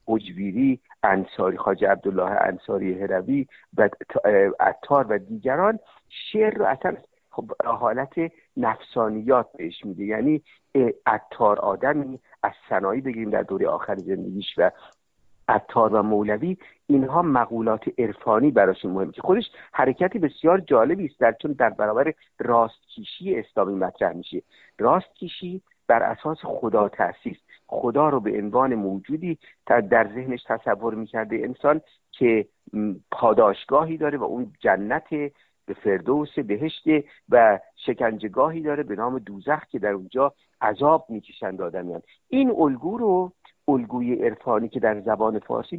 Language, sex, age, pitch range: Persian, male, 50-69, 110-155 Hz